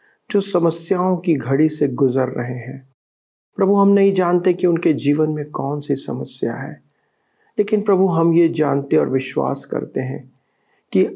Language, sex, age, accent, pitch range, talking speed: Hindi, male, 50-69, native, 135-180 Hz, 160 wpm